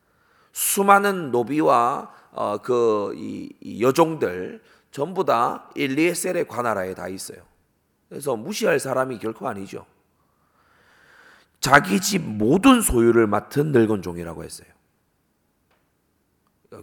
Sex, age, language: male, 30-49, Korean